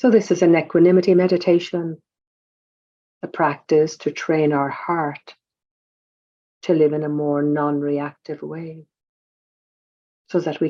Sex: female